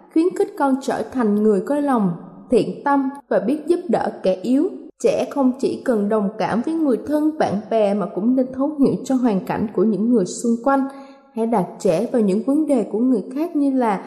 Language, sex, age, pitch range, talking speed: Vietnamese, female, 20-39, 220-290 Hz, 220 wpm